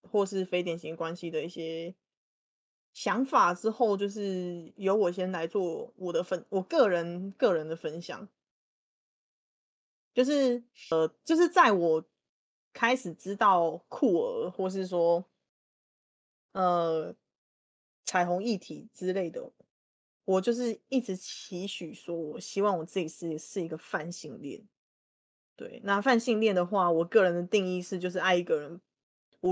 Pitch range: 170-215 Hz